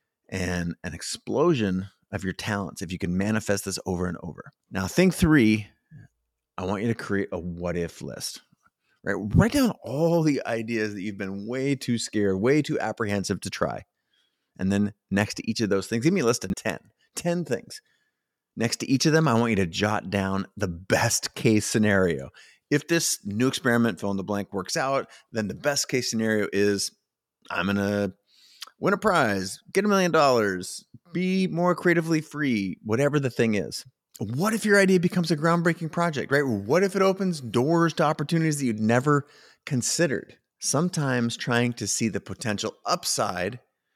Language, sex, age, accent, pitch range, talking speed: English, male, 30-49, American, 100-155 Hz, 185 wpm